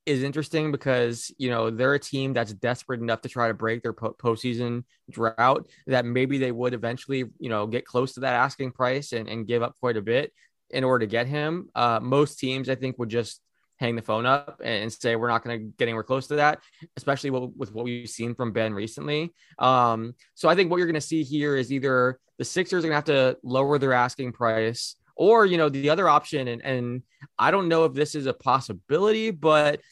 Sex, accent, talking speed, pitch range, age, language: male, American, 230 wpm, 120-150 Hz, 20-39, English